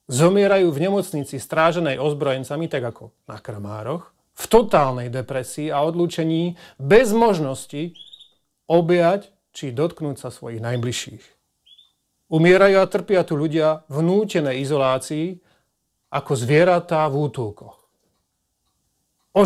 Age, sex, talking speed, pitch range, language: 40-59, male, 110 wpm, 130-170 Hz, Slovak